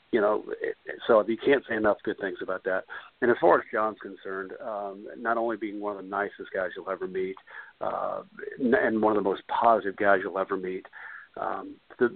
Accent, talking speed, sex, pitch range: American, 205 wpm, male, 100-120 Hz